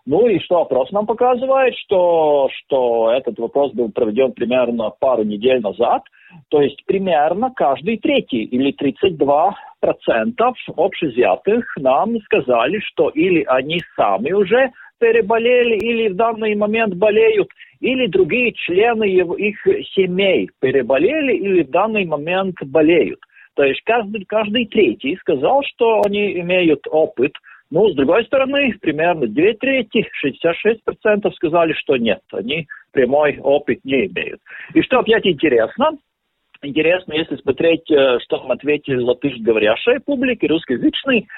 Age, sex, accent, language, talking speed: 50-69, male, native, Russian, 130 wpm